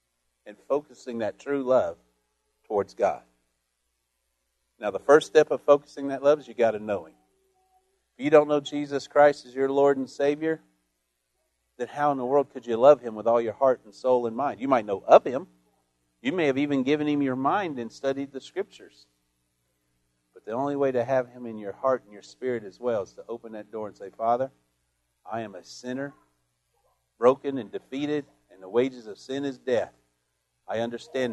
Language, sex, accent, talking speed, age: English, male, American, 200 wpm, 50-69